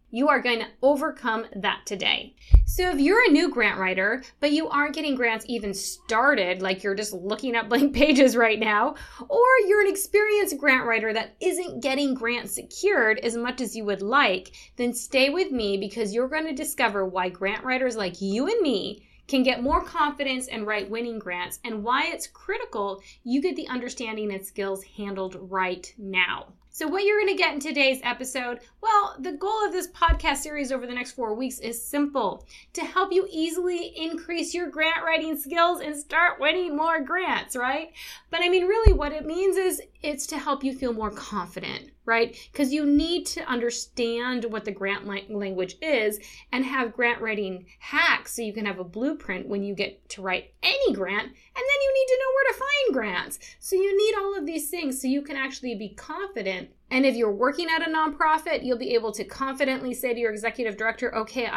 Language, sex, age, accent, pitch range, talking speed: English, female, 20-39, American, 220-315 Hz, 200 wpm